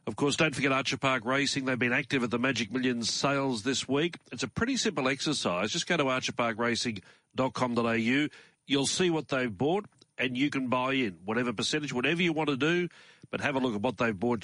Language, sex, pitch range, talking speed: English, male, 110-140 Hz, 210 wpm